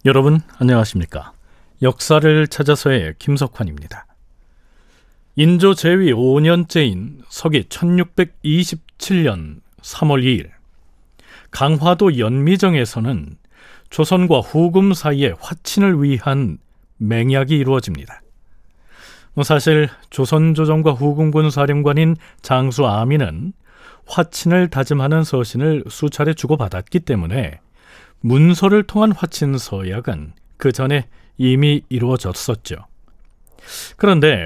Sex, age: male, 40-59